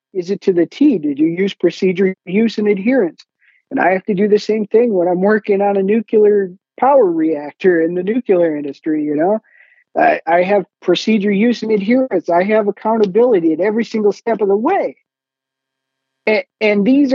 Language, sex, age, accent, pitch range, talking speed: English, male, 50-69, American, 170-230 Hz, 190 wpm